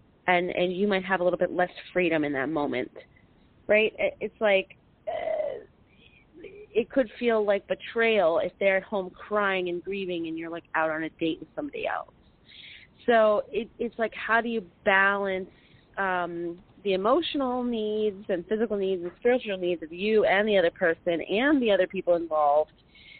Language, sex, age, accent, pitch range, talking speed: English, female, 30-49, American, 180-215 Hz, 175 wpm